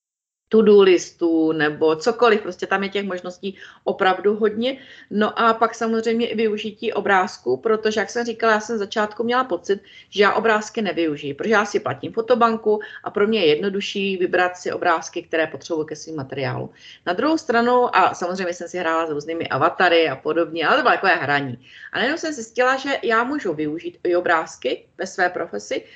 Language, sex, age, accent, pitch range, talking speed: Czech, female, 30-49, native, 170-225 Hz, 185 wpm